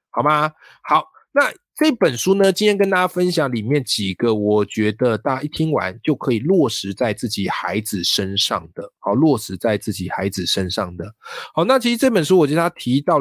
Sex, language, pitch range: male, Chinese, 110-145 Hz